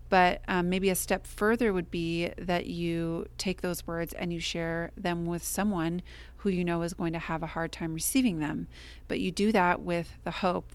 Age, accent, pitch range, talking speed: 30-49, American, 165-190 Hz, 210 wpm